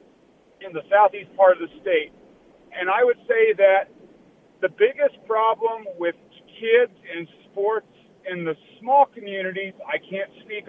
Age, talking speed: 50-69, 145 wpm